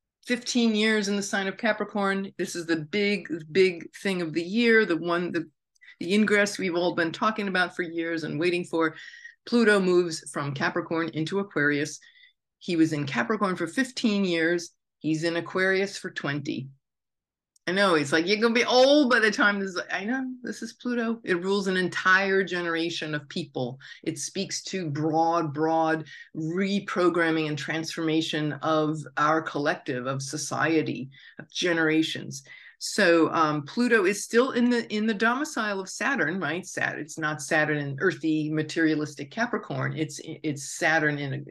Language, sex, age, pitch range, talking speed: English, female, 40-59, 150-195 Hz, 165 wpm